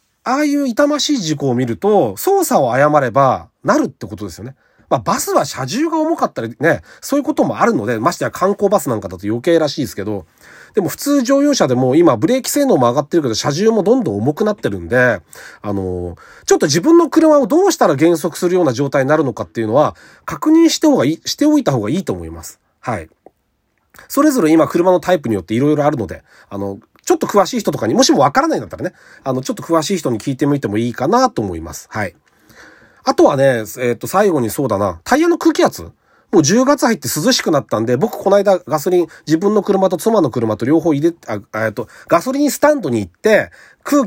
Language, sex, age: Japanese, male, 40-59